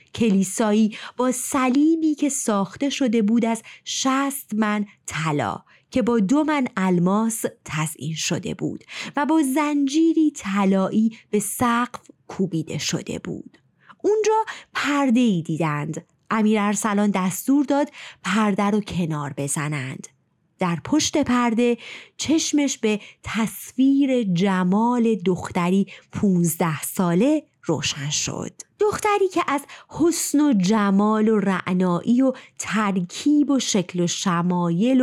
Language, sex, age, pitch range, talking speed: Persian, female, 30-49, 180-270 Hz, 115 wpm